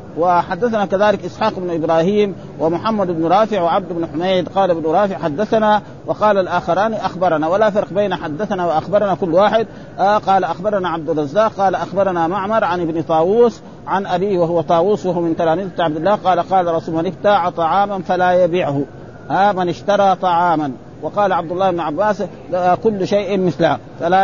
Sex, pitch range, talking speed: male, 165-200 Hz, 165 wpm